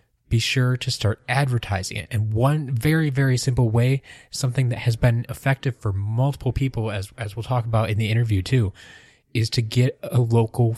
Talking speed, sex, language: 190 wpm, male, English